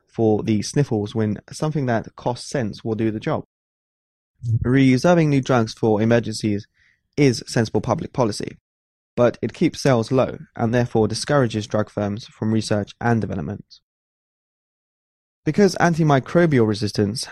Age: 20-39